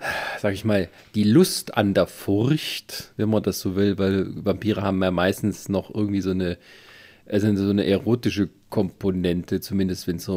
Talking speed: 180 wpm